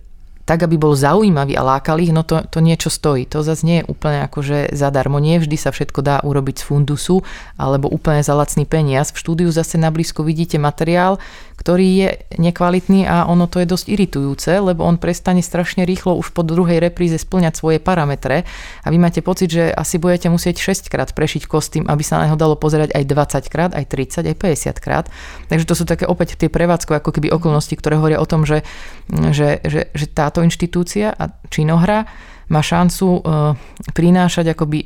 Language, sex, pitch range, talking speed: Slovak, female, 145-170 Hz, 190 wpm